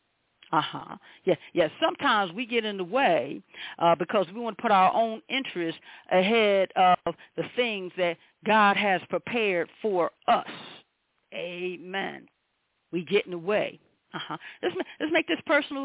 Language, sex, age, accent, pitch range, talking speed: English, female, 50-69, American, 175-250 Hz, 160 wpm